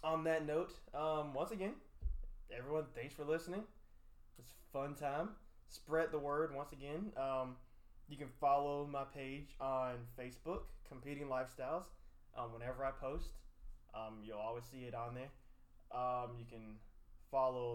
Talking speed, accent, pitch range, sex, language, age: 145 wpm, American, 110-150 Hz, male, English, 20-39